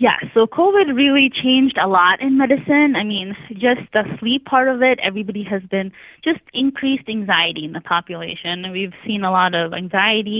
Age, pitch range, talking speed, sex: 20-39, 175-220 Hz, 185 wpm, female